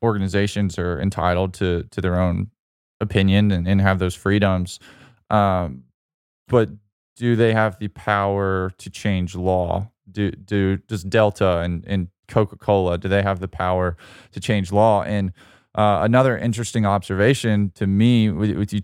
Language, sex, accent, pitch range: English, male, American, 95-110 Hz